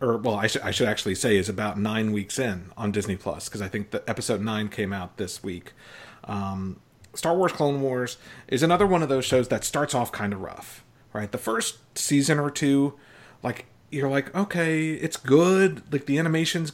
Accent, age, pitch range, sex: American, 40-59, 105-135 Hz, male